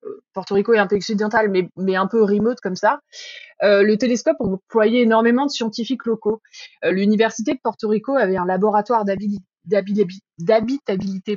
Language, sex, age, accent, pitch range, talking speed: French, female, 20-39, French, 190-235 Hz, 170 wpm